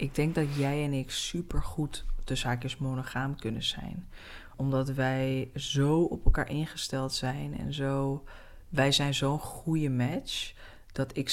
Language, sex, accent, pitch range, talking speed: Dutch, female, Dutch, 130-155 Hz, 155 wpm